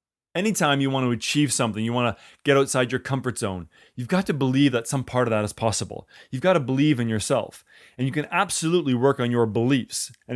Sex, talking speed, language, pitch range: male, 230 wpm, English, 115-145 Hz